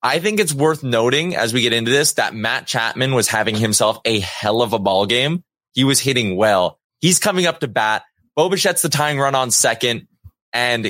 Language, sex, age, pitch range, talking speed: English, male, 20-39, 110-145 Hz, 210 wpm